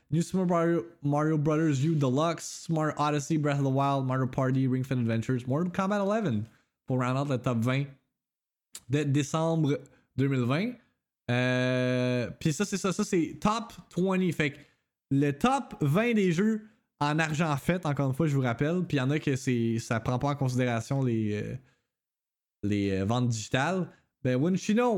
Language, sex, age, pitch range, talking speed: French, male, 20-39, 130-200 Hz, 180 wpm